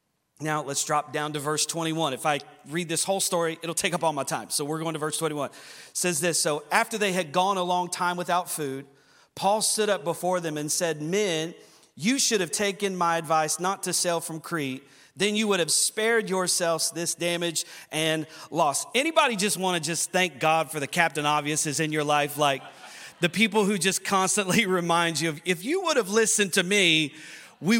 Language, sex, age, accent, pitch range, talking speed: English, male, 40-59, American, 160-205 Hz, 215 wpm